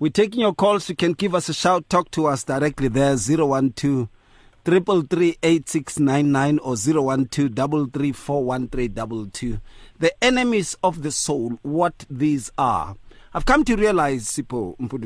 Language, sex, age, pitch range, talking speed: English, male, 40-59, 110-185 Hz, 125 wpm